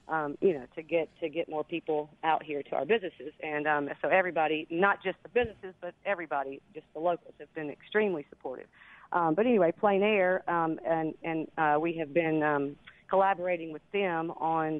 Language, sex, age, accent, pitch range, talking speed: English, female, 40-59, American, 150-180 Hz, 195 wpm